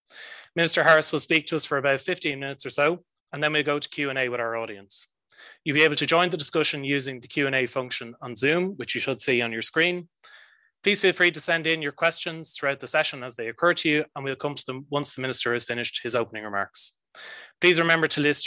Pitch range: 125-155 Hz